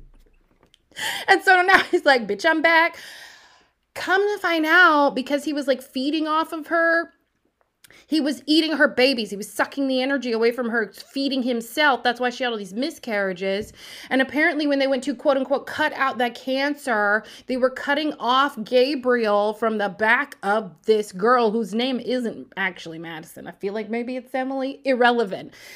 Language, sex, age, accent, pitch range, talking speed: English, female, 30-49, American, 225-325 Hz, 180 wpm